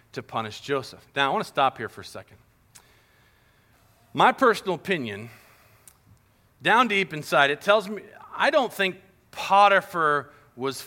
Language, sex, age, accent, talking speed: English, male, 40-59, American, 145 wpm